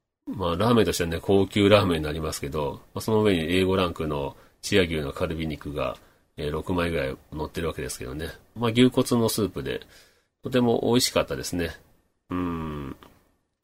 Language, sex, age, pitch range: Japanese, male, 40-59, 80-105 Hz